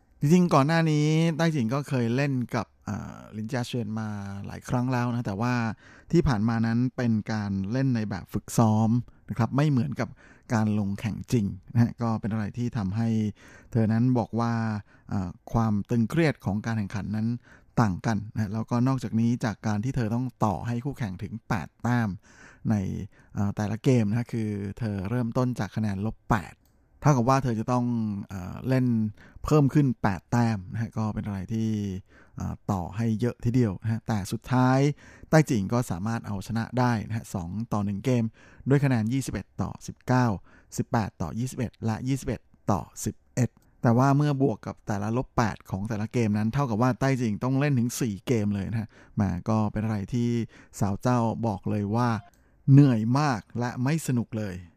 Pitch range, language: 105-125 Hz, Thai